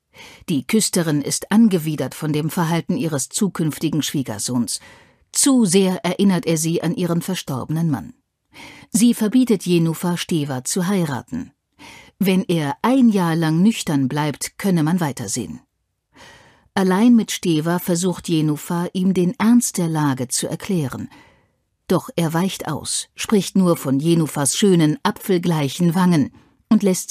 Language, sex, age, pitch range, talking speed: German, female, 50-69, 150-200 Hz, 135 wpm